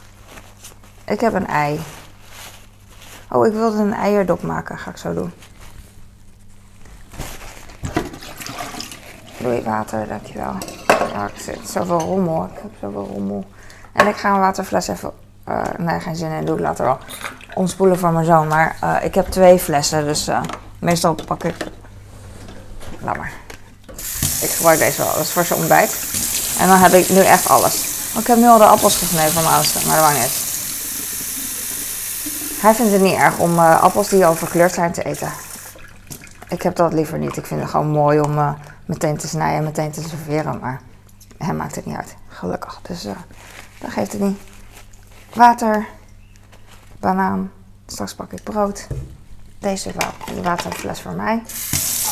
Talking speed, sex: 165 wpm, female